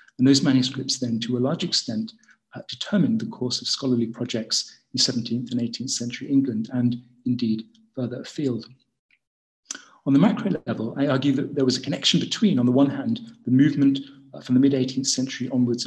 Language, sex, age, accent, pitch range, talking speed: English, male, 40-59, British, 120-140 Hz, 190 wpm